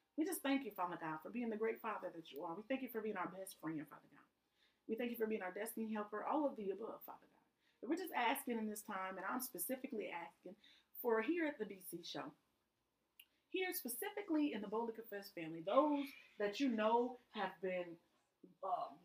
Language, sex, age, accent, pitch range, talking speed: English, female, 30-49, American, 190-265 Hz, 215 wpm